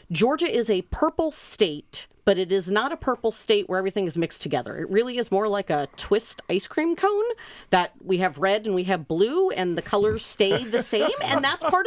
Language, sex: English, female